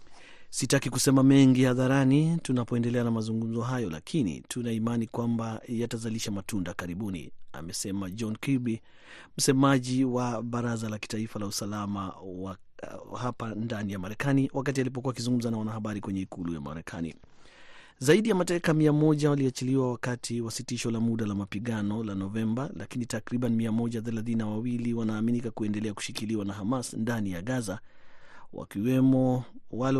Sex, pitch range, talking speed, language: male, 105-130 Hz, 130 wpm, Swahili